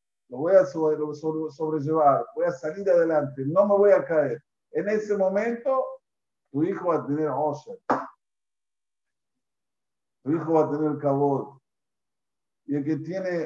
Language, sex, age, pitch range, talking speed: Spanish, male, 50-69, 140-175 Hz, 145 wpm